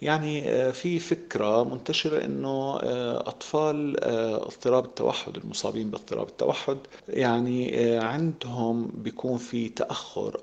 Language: Arabic